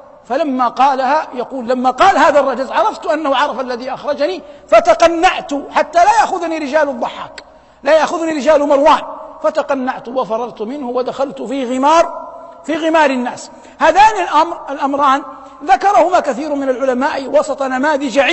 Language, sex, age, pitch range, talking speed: Arabic, male, 50-69, 235-305 Hz, 130 wpm